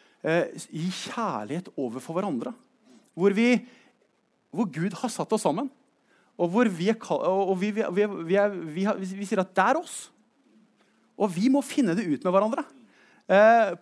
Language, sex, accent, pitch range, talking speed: English, male, Norwegian, 190-235 Hz, 180 wpm